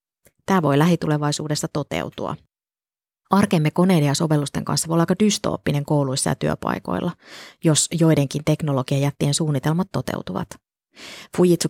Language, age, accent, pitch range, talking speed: Finnish, 20-39, native, 145-175 Hz, 120 wpm